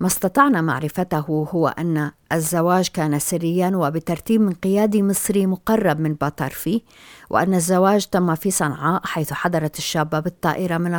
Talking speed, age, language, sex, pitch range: 135 wpm, 50-69, Arabic, female, 160-190 Hz